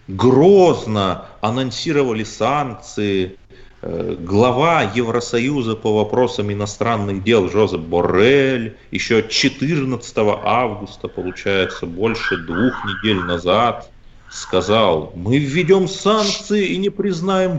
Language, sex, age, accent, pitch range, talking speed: Russian, male, 30-49, native, 100-145 Hz, 90 wpm